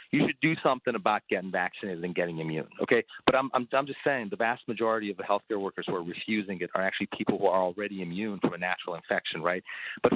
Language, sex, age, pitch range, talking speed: English, male, 40-59, 105-140 Hz, 240 wpm